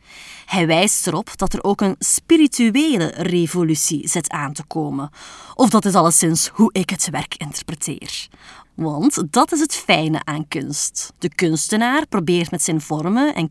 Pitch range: 160-215 Hz